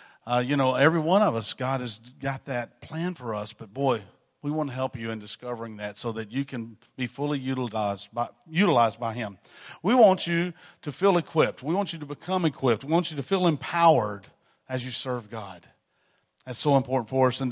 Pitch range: 120-145 Hz